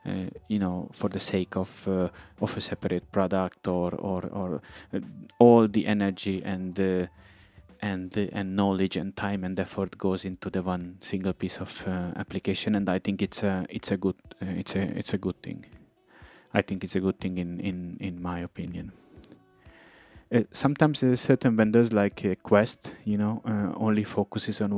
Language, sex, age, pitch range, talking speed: English, male, 30-49, 90-105 Hz, 185 wpm